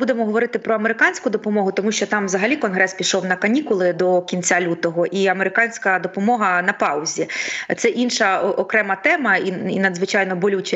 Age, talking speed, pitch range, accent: 20-39, 165 wpm, 195-235 Hz, native